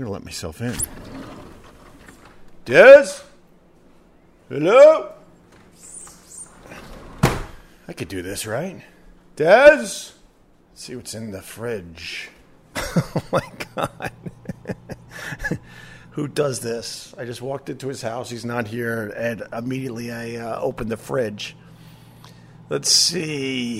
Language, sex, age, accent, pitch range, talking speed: English, male, 50-69, American, 110-145 Hz, 110 wpm